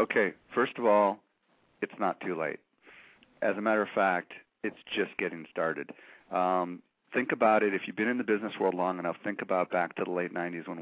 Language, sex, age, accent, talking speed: English, male, 40-59, American, 210 wpm